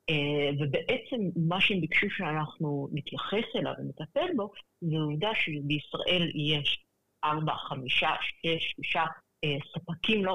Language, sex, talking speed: Hebrew, female, 110 wpm